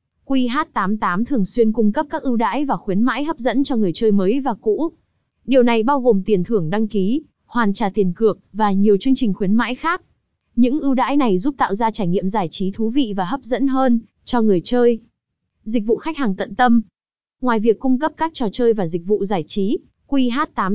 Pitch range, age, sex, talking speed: 200-260 Hz, 20-39, female, 225 wpm